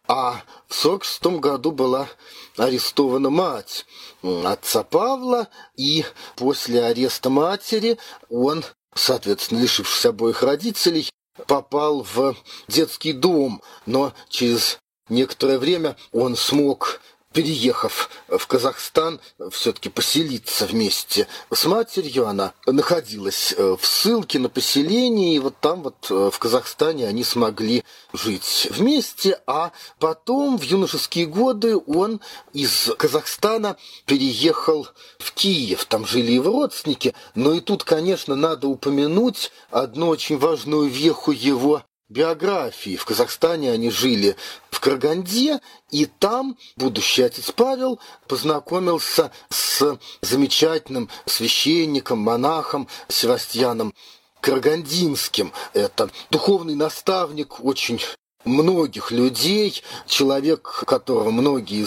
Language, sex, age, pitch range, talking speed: Russian, male, 40-59, 130-205 Hz, 100 wpm